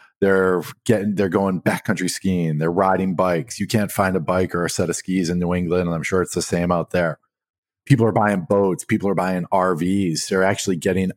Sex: male